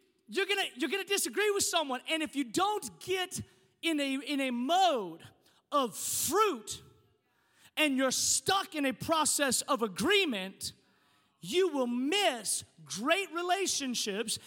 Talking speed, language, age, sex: 135 wpm, English, 30-49, male